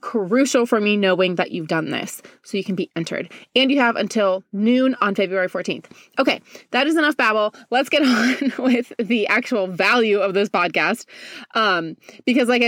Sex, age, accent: female, 20-39, American